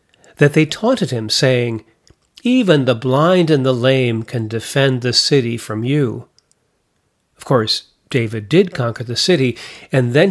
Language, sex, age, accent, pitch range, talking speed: English, male, 40-59, American, 120-150 Hz, 150 wpm